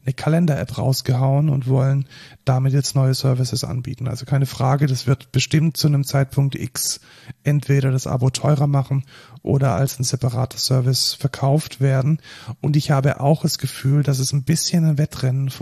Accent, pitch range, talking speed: German, 130-150 Hz, 170 wpm